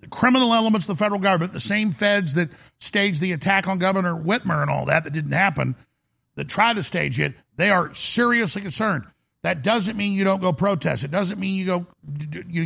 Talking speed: 205 wpm